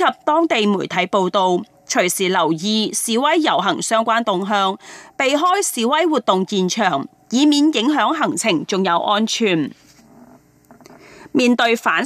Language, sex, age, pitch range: Chinese, female, 30-49, 190-275 Hz